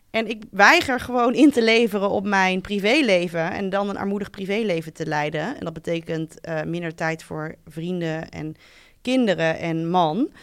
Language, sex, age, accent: Dutch, female, 20-39, Dutch